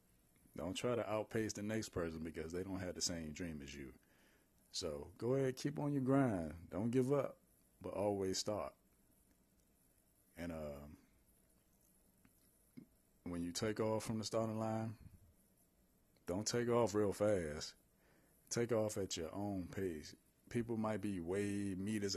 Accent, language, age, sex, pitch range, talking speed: American, English, 30-49, male, 80-105 Hz, 150 wpm